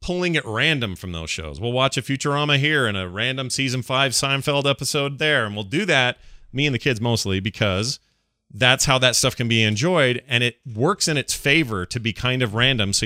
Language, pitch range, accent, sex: English, 105-145 Hz, American, male